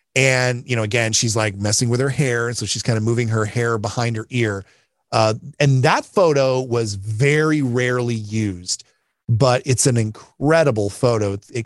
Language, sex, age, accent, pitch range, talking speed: English, male, 30-49, American, 110-130 Hz, 180 wpm